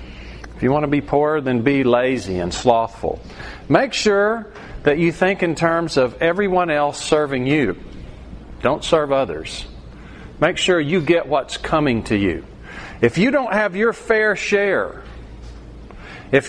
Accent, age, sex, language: American, 50-69, male, English